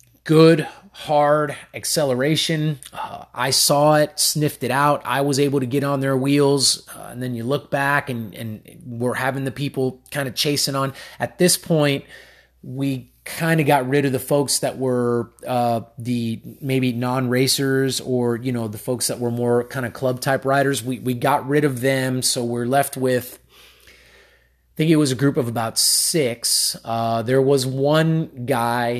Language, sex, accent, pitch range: English, male, American, 115-140 Hz